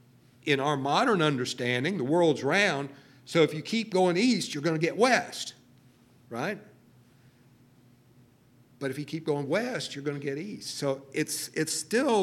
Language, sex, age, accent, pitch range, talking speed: English, male, 50-69, American, 125-160 Hz, 155 wpm